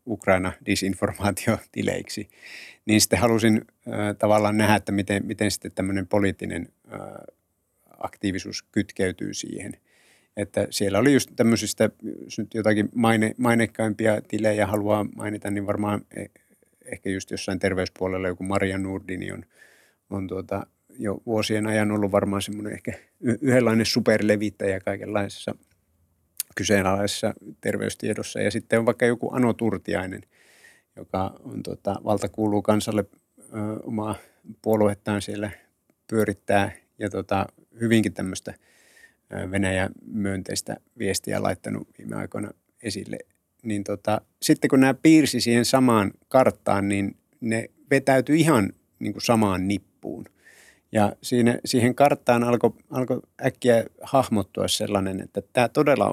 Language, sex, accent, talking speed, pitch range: Finnish, male, native, 115 wpm, 100-115 Hz